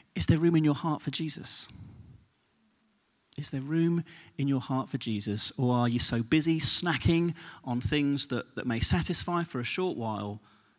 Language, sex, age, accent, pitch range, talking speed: English, male, 40-59, British, 125-170 Hz, 180 wpm